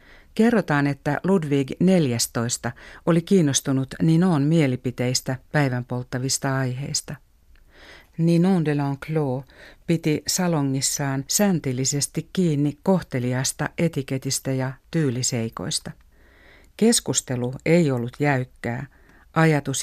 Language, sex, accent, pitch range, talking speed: Finnish, female, native, 130-155 Hz, 80 wpm